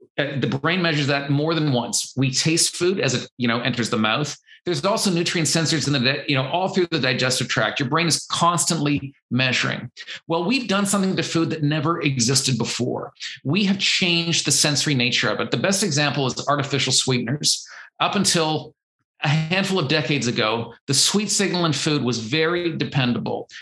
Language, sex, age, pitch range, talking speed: English, male, 40-59, 135-170 Hz, 190 wpm